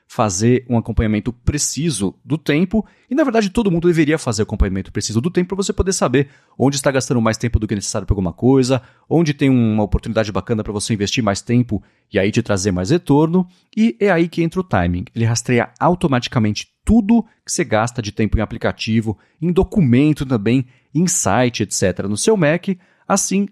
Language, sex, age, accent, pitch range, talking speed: Portuguese, male, 30-49, Brazilian, 110-160 Hz, 195 wpm